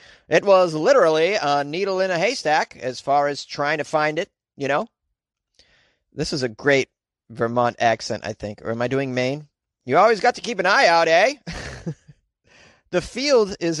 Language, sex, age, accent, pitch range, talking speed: English, male, 30-49, American, 130-175 Hz, 185 wpm